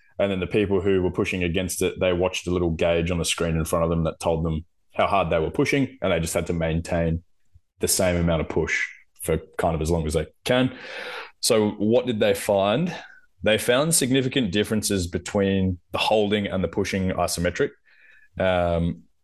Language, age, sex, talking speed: English, 20-39, male, 205 wpm